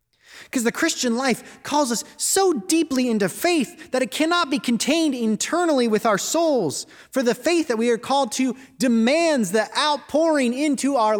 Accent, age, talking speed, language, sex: American, 30-49, 170 wpm, English, male